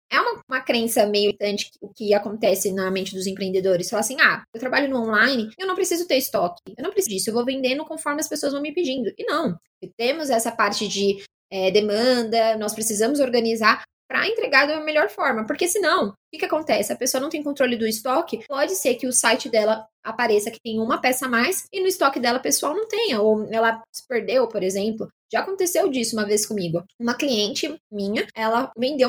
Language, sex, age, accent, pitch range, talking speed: Portuguese, female, 20-39, Brazilian, 225-300 Hz, 210 wpm